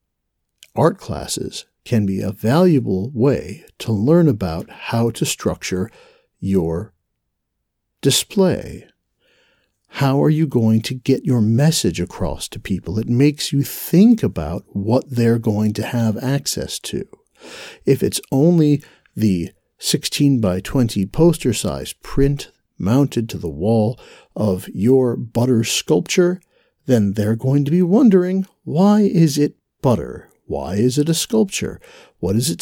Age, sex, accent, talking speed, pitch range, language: 60-79, male, American, 135 wpm, 105-160 Hz, English